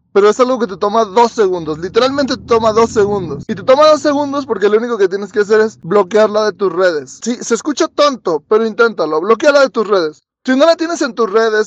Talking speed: 240 wpm